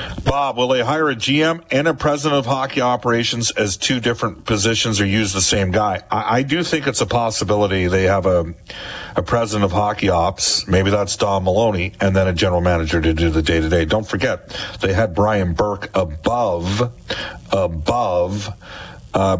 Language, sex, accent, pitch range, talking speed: English, male, American, 90-115 Hz, 180 wpm